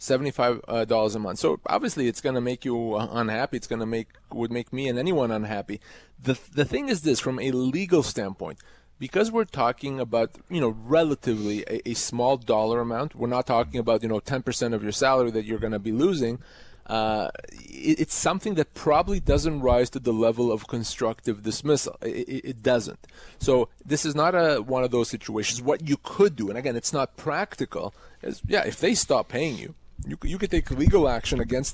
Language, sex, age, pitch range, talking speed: English, male, 30-49, 115-145 Hz, 200 wpm